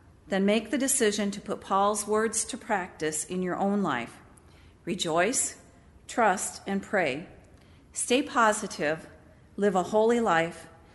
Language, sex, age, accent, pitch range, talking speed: English, female, 40-59, American, 160-200 Hz, 130 wpm